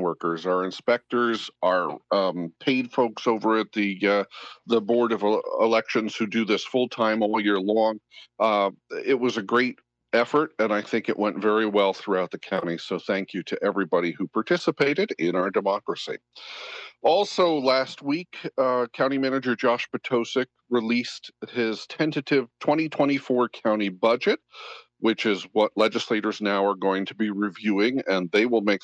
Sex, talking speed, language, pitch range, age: male, 160 wpm, English, 105-125 Hz, 50-69